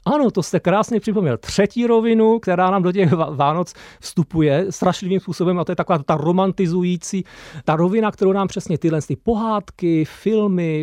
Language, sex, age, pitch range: Czech, male, 40-59, 150-190 Hz